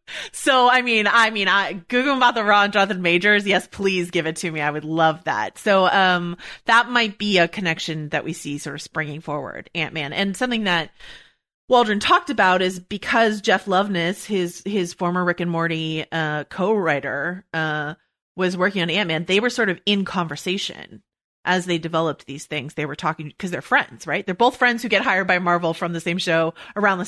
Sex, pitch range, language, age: female, 165-215 Hz, English, 30-49